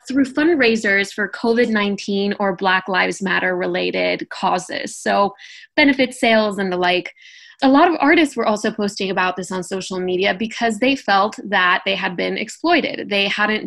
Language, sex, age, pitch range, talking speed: English, female, 20-39, 195-240 Hz, 160 wpm